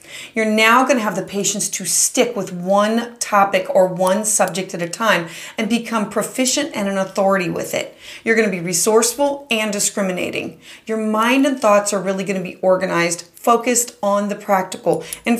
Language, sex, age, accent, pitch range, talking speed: English, female, 30-49, American, 195-245 Hz, 185 wpm